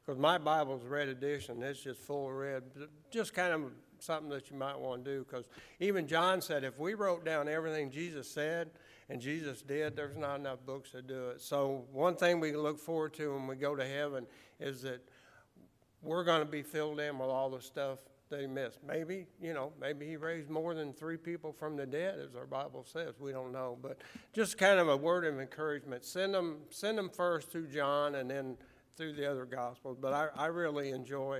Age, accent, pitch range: 60-79, American, 130-160 Hz